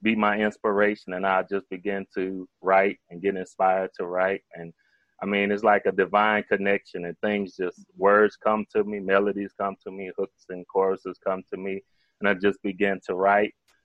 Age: 20-39